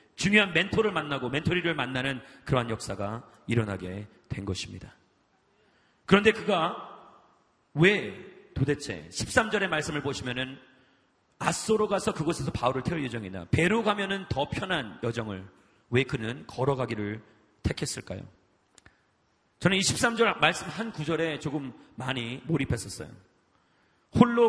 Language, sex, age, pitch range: Korean, male, 40-59, 120-175 Hz